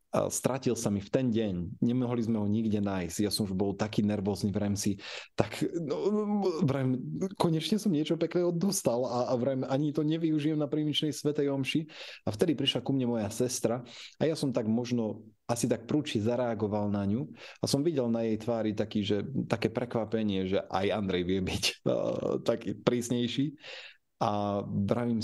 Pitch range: 100-120 Hz